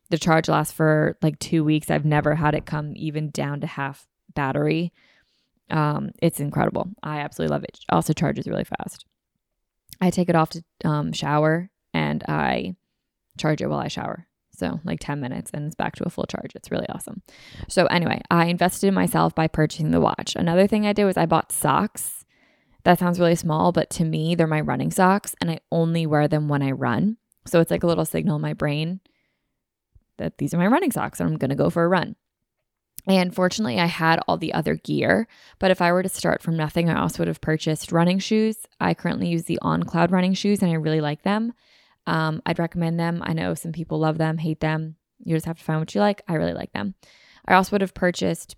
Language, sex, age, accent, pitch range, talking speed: English, female, 20-39, American, 150-180 Hz, 220 wpm